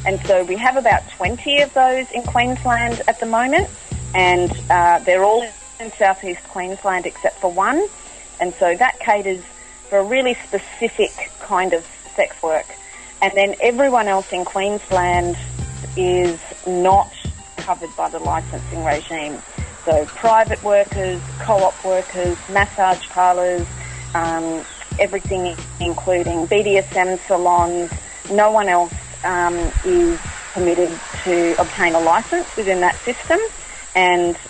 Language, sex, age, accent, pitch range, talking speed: English, female, 30-49, Australian, 175-210 Hz, 130 wpm